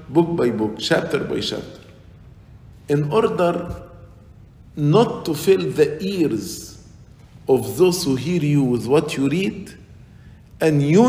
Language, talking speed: English, 130 wpm